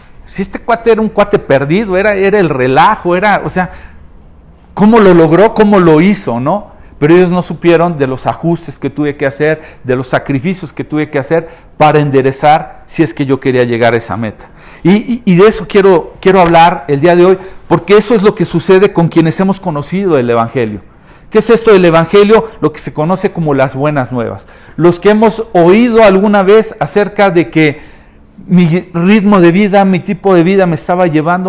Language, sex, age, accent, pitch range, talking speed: Spanish, male, 50-69, Mexican, 145-195 Hz, 200 wpm